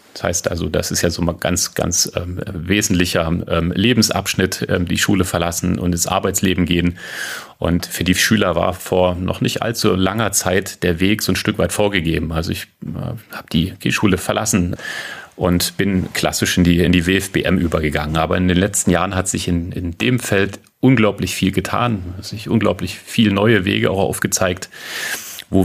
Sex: male